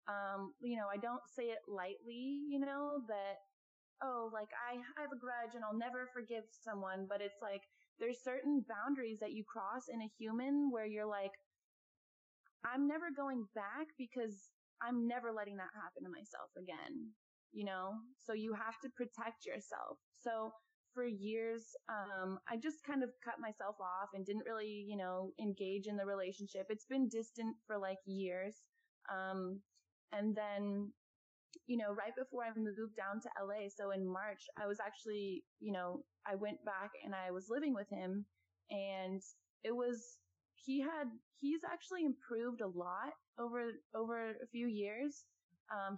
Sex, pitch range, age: female, 195-240 Hz, 20-39